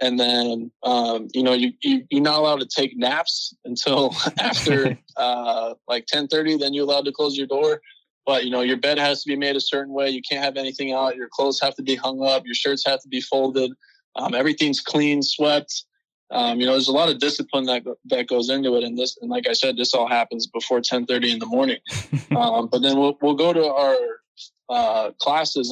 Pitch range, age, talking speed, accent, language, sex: 125-145 Hz, 20-39, 225 wpm, American, English, male